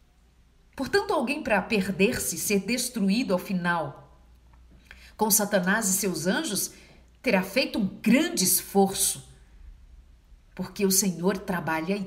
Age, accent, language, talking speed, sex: 50-69, Brazilian, Portuguese, 115 wpm, female